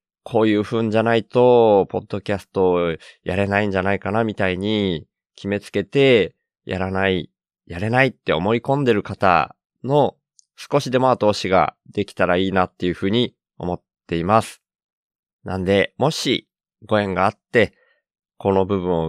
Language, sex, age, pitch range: Japanese, male, 20-39, 90-115 Hz